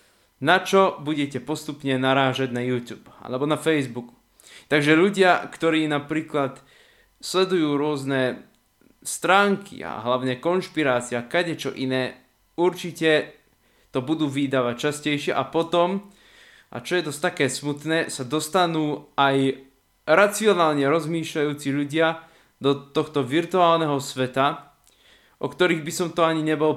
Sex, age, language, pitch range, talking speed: male, 20-39, Slovak, 135-175 Hz, 120 wpm